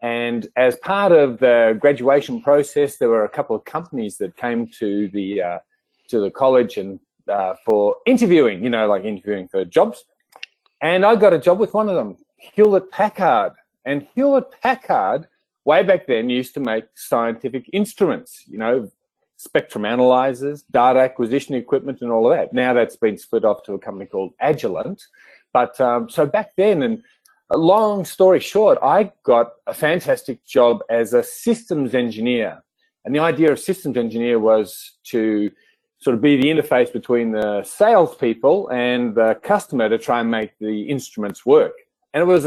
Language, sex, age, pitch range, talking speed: English, male, 40-59, 115-190 Hz, 170 wpm